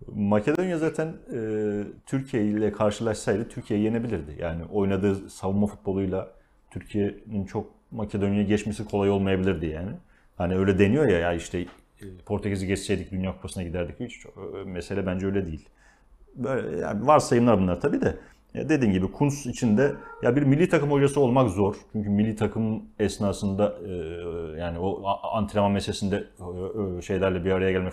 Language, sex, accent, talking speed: Turkish, male, native, 145 wpm